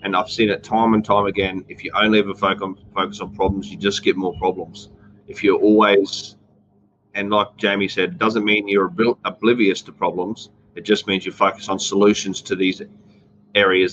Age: 30-49